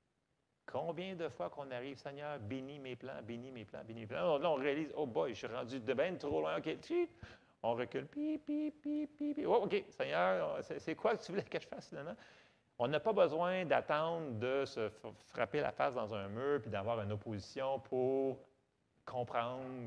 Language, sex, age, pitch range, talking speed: French, male, 40-59, 110-150 Hz, 200 wpm